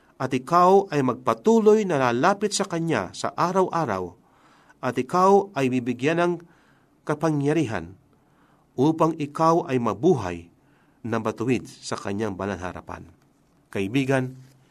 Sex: male